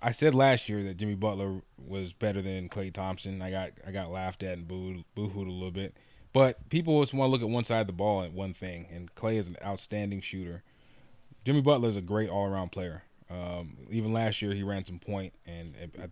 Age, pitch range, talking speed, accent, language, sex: 20-39, 95-115 Hz, 225 wpm, American, English, male